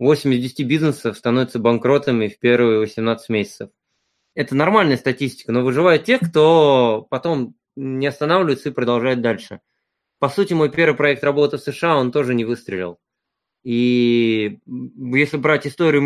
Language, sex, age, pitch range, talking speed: Ukrainian, male, 20-39, 115-140 Hz, 155 wpm